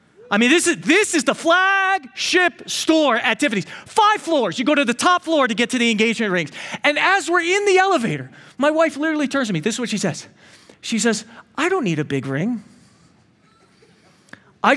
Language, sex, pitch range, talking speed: English, male, 220-325 Hz, 205 wpm